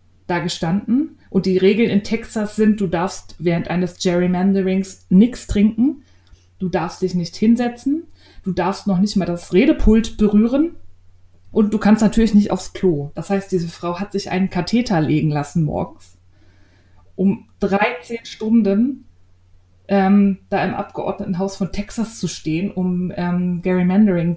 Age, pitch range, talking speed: 20-39, 175-215 Hz, 150 wpm